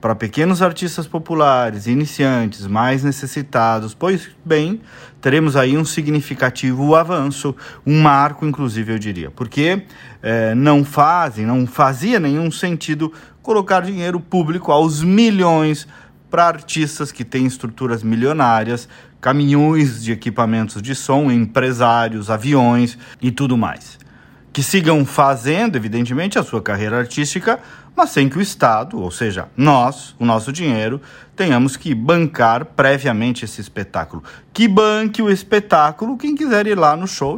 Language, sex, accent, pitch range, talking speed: Portuguese, male, Brazilian, 125-165 Hz, 135 wpm